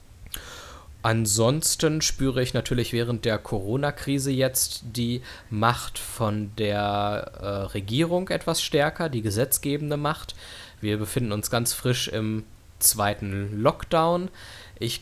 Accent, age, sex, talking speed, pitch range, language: German, 20-39, male, 110 wpm, 100-120 Hz, German